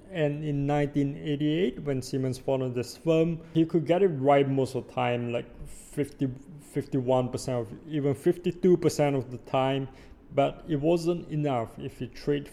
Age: 20-39